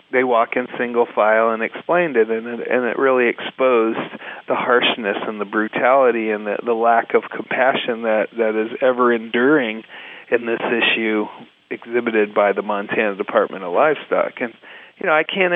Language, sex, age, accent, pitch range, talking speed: English, male, 40-59, American, 115-140 Hz, 160 wpm